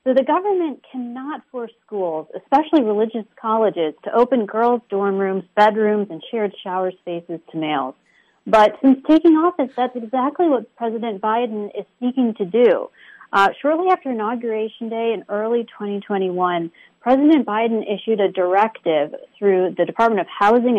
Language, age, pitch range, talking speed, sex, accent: English, 40-59, 190-245 Hz, 150 wpm, female, American